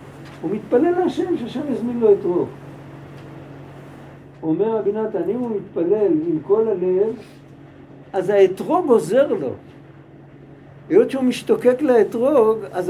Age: 60-79